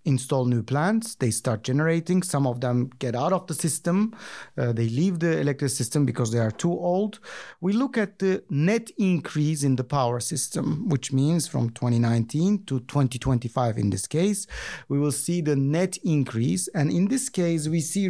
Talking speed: 185 wpm